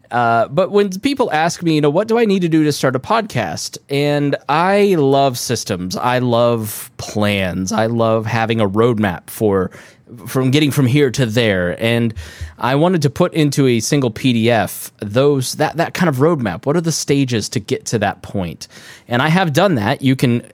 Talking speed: 200 wpm